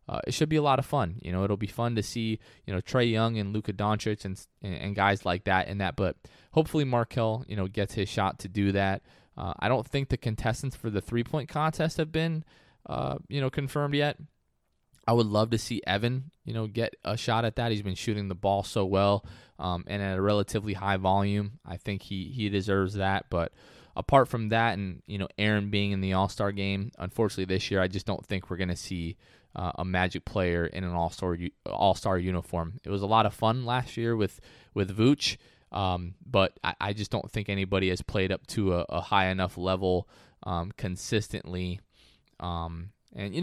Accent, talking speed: American, 220 wpm